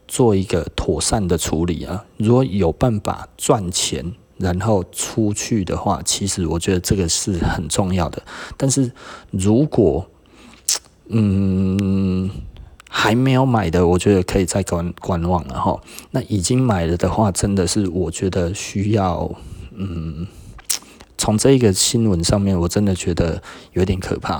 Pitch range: 90-110 Hz